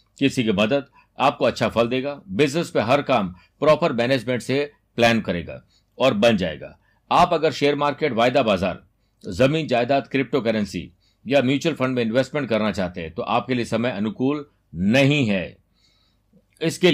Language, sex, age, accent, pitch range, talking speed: Hindi, male, 60-79, native, 115-145 Hz, 160 wpm